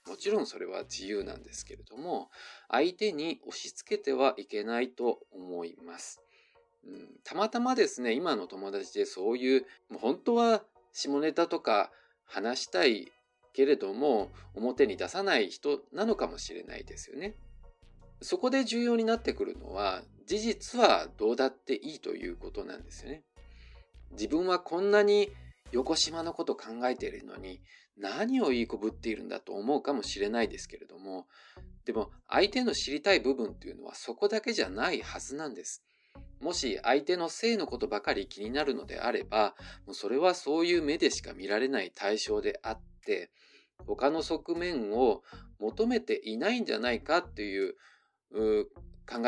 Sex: male